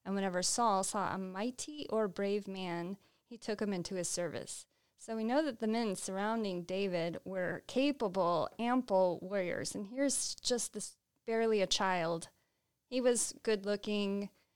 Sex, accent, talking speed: female, American, 155 wpm